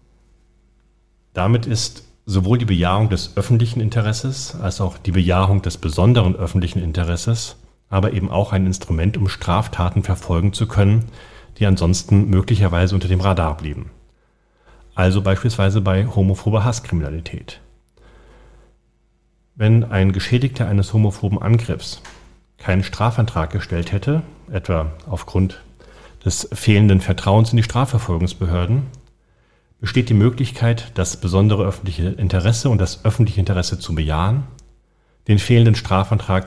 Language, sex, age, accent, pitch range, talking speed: German, male, 40-59, German, 90-115 Hz, 120 wpm